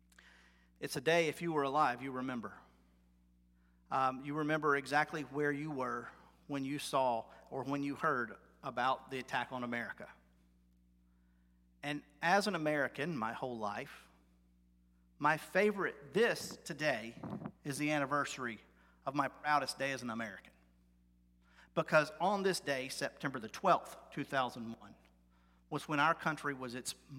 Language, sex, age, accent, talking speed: English, male, 40-59, American, 140 wpm